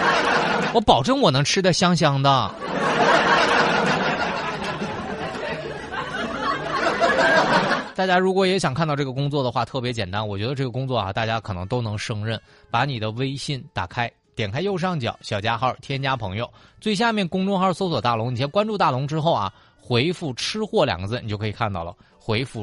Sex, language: male, Chinese